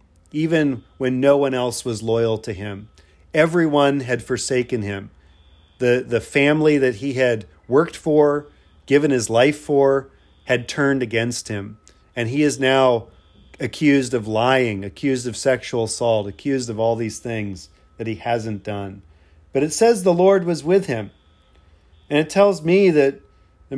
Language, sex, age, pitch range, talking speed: English, male, 40-59, 105-140 Hz, 160 wpm